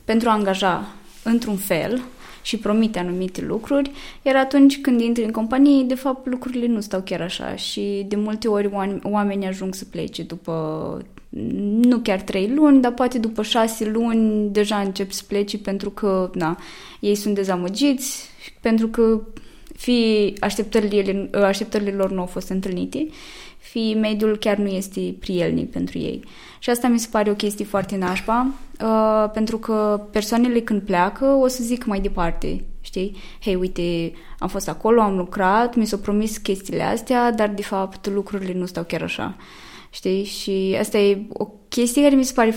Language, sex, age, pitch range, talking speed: Romanian, female, 20-39, 190-230 Hz, 165 wpm